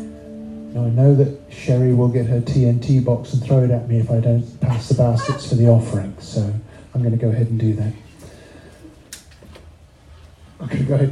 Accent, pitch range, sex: British, 120-135 Hz, male